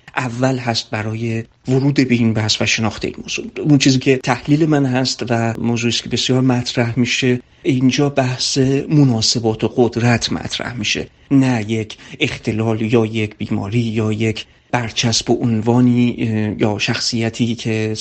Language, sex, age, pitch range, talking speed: Persian, male, 40-59, 110-130 Hz, 145 wpm